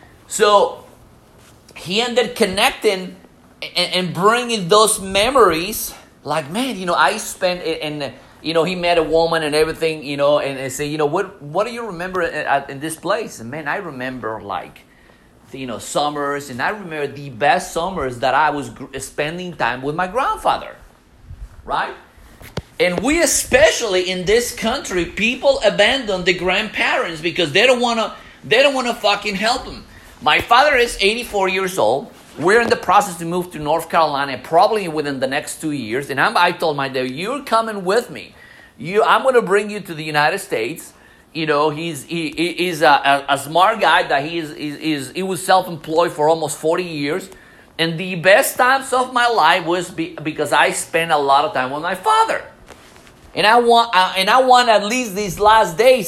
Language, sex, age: English, male, 30-49